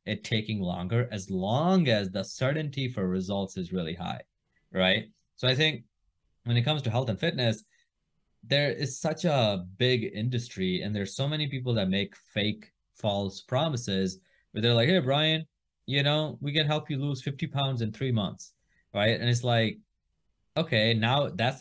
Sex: male